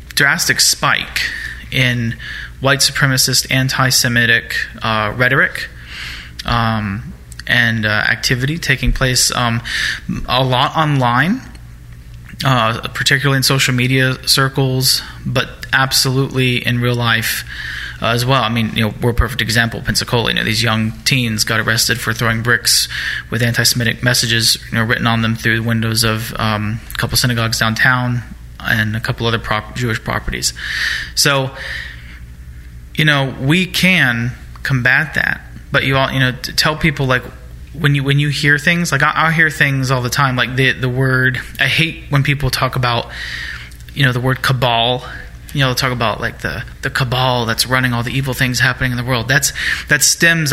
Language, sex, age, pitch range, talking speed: English, male, 20-39, 115-135 Hz, 170 wpm